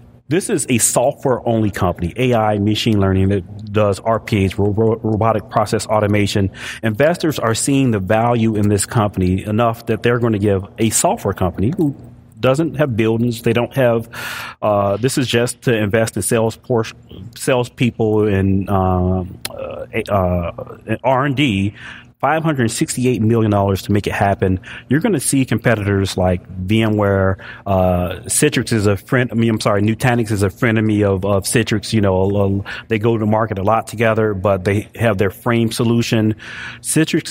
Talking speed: 170 wpm